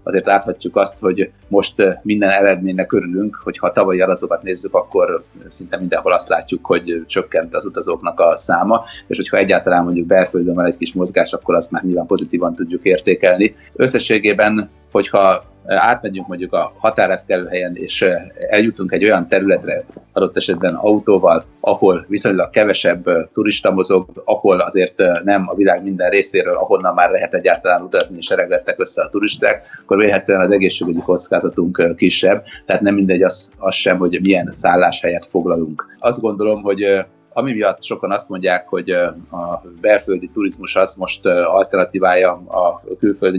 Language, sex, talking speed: Hungarian, male, 150 wpm